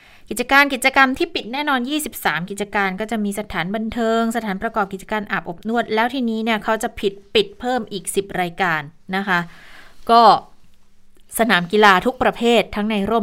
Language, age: Thai, 20-39